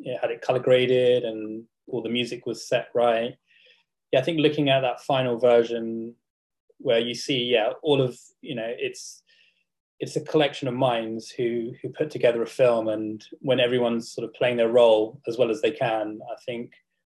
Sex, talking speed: male, 195 wpm